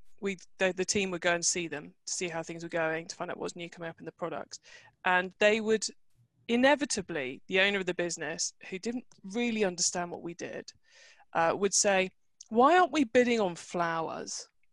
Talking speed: 205 wpm